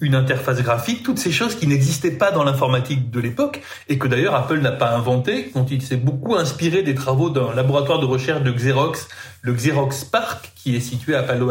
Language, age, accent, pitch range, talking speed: French, 30-49, French, 135-205 Hz, 215 wpm